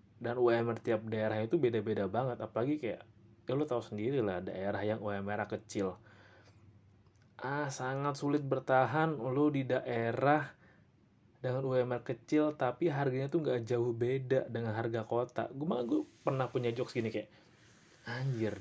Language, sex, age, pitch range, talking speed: Indonesian, male, 20-39, 115-140 Hz, 145 wpm